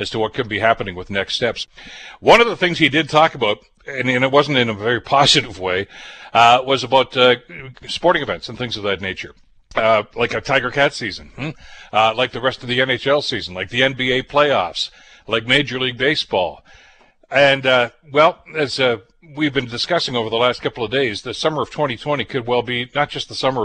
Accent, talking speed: American, 215 wpm